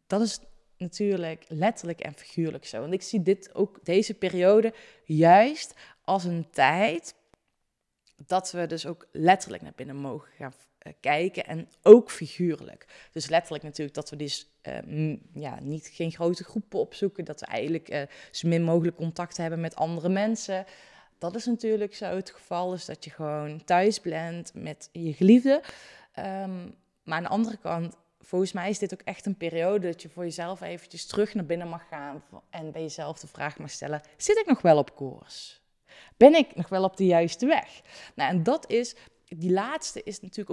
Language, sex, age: Dutch, female, 20-39